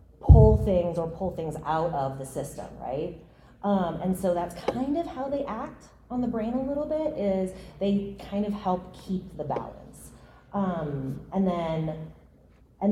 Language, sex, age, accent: English, female, 30-49, American